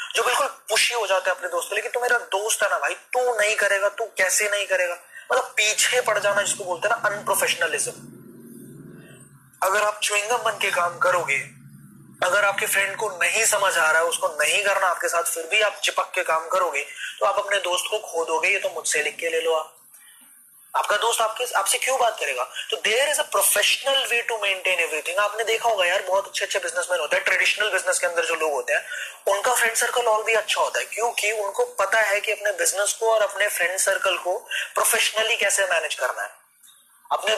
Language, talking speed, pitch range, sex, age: Hindi, 185 wpm, 190-230 Hz, male, 20-39